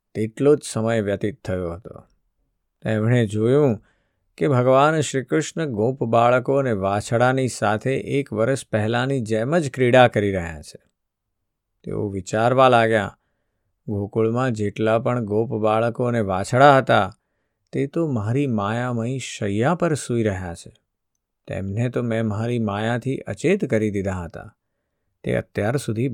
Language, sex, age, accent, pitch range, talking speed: Gujarati, male, 50-69, native, 105-130 Hz, 125 wpm